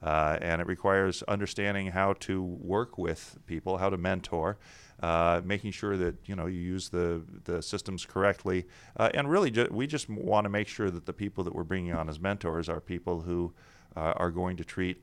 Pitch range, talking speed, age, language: 85-105 Hz, 210 wpm, 40-59, English